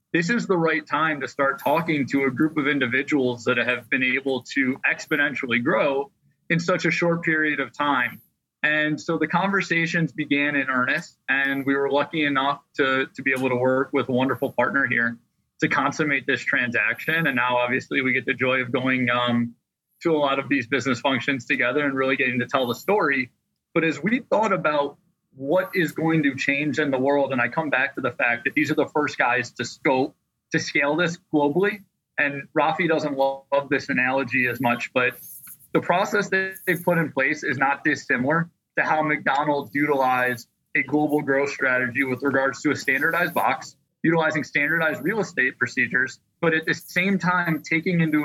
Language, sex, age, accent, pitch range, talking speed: English, male, 20-39, American, 135-165 Hz, 195 wpm